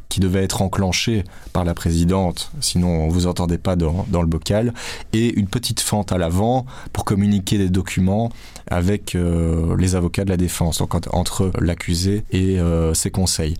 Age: 20-39